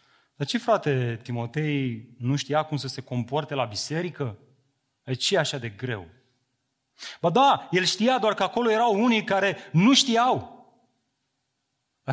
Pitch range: 135-210 Hz